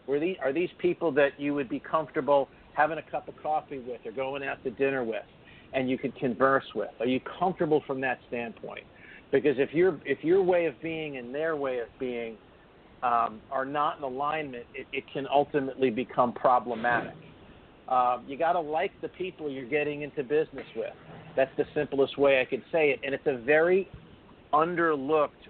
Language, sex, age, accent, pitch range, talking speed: English, male, 50-69, American, 130-155 Hz, 195 wpm